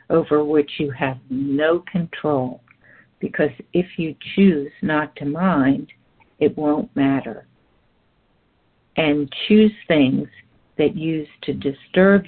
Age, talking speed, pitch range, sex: 60-79, 110 wpm, 140-175 Hz, female